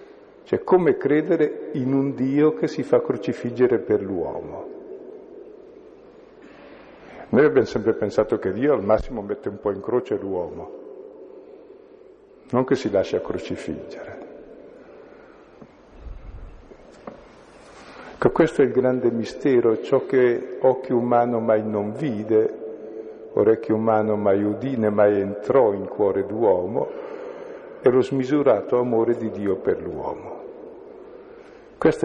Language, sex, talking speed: Italian, male, 115 wpm